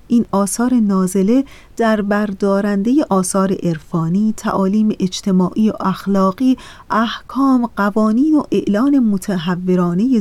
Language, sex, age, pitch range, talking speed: Persian, female, 30-49, 185-230 Hz, 95 wpm